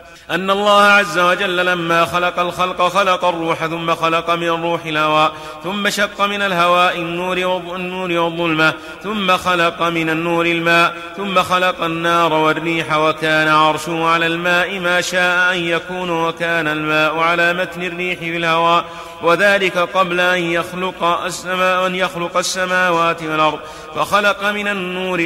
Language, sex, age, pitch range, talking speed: Arabic, male, 30-49, 160-185 Hz, 125 wpm